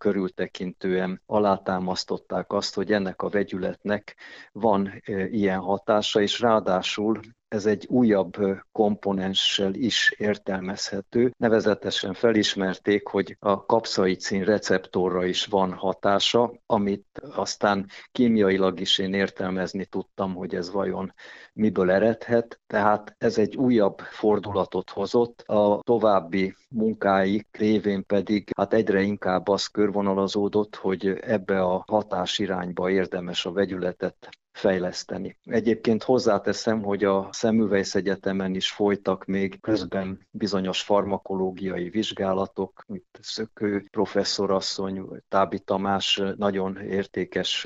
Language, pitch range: Hungarian, 95-105 Hz